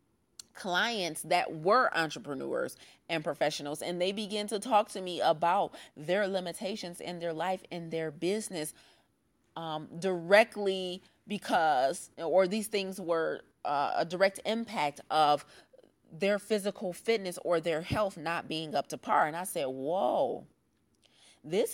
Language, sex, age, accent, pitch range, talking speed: English, female, 30-49, American, 160-200 Hz, 140 wpm